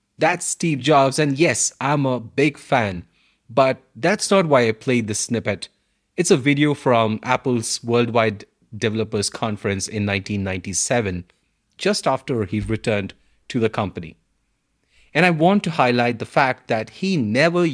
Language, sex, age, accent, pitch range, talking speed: English, male, 30-49, Indian, 110-145 Hz, 150 wpm